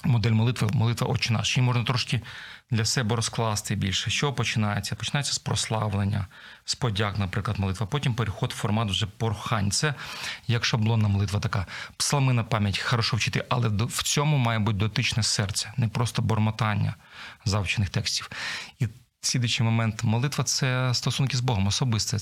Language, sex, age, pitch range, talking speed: Ukrainian, male, 40-59, 110-130 Hz, 155 wpm